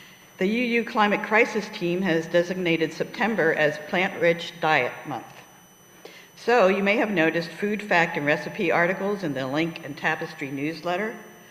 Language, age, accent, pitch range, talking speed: English, 60-79, American, 155-190 Hz, 145 wpm